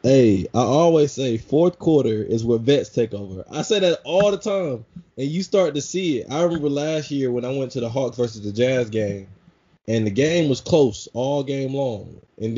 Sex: male